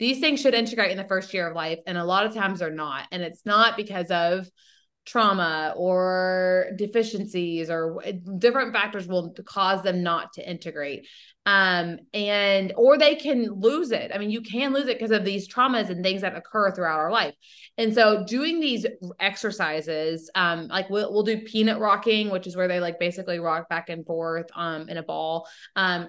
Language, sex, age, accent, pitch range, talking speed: English, female, 20-39, American, 180-220 Hz, 195 wpm